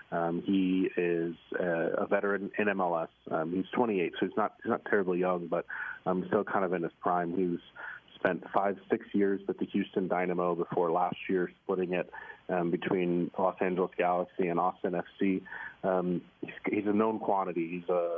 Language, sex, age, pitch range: English, male, 40-59, 90-95 Hz